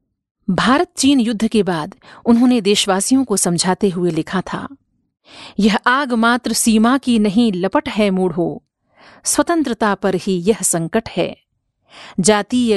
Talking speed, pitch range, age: 130 wpm, 190-250 Hz, 50-69